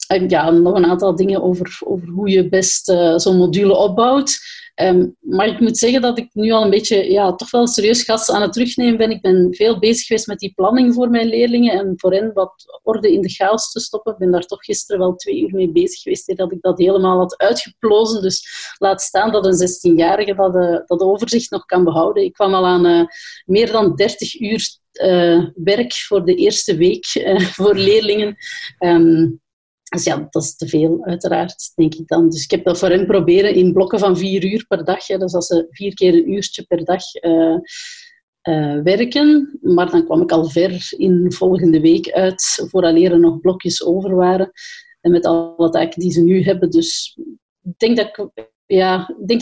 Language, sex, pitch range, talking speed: Dutch, female, 180-225 Hz, 210 wpm